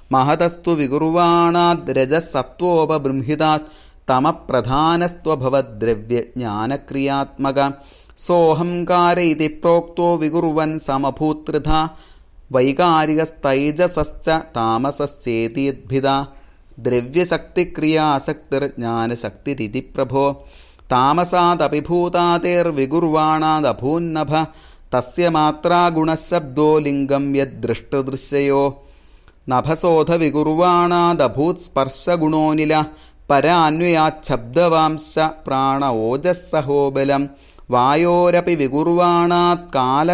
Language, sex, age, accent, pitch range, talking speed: Malayalam, male, 30-49, native, 135-170 Hz, 35 wpm